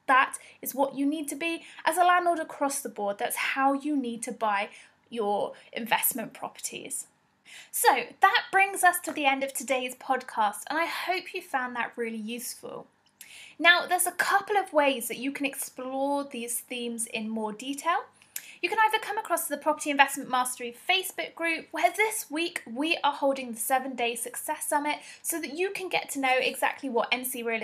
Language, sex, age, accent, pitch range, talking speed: English, female, 20-39, British, 255-350 Hz, 190 wpm